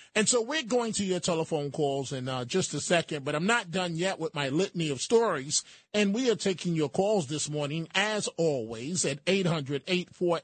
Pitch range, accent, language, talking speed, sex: 145-195 Hz, American, English, 220 wpm, male